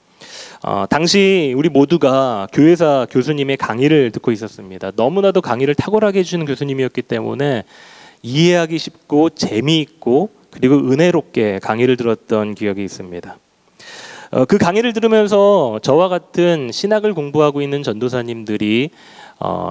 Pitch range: 125-185 Hz